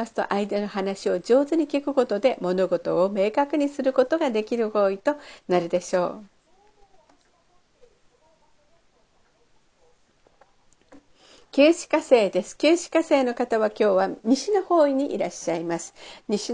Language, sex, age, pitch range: Japanese, female, 50-69, 200-285 Hz